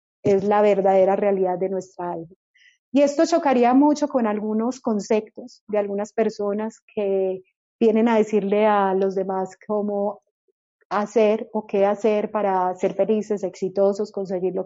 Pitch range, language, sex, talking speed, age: 200-245 Hz, Spanish, female, 145 wpm, 30-49